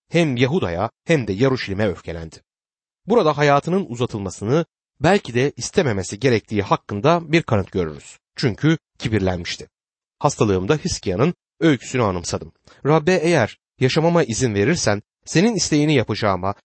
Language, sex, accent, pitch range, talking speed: Turkish, male, native, 110-165 Hz, 110 wpm